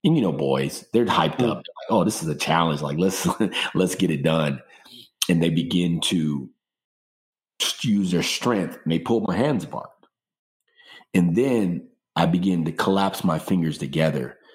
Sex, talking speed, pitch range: male, 175 wpm, 80-95 Hz